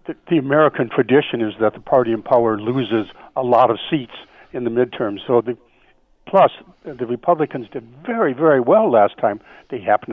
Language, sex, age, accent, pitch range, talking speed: English, male, 60-79, American, 115-145 Hz, 185 wpm